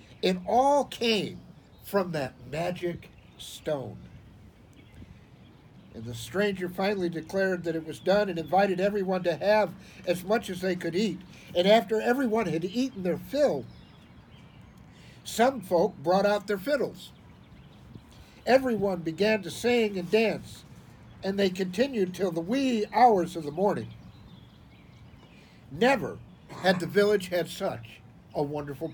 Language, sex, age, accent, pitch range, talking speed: English, male, 60-79, American, 155-205 Hz, 135 wpm